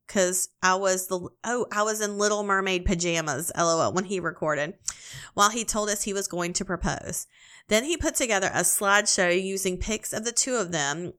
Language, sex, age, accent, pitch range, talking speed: English, female, 30-49, American, 175-210 Hz, 200 wpm